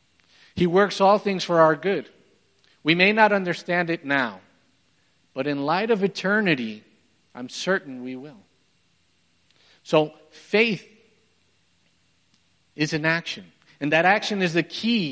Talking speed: 130 wpm